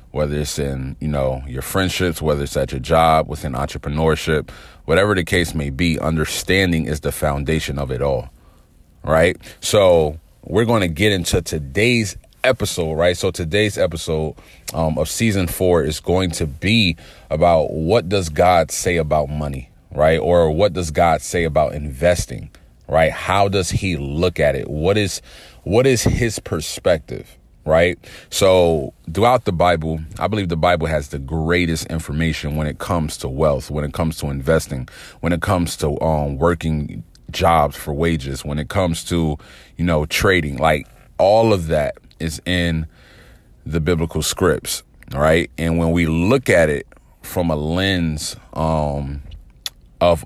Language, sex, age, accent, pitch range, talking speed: English, male, 30-49, American, 75-90 Hz, 160 wpm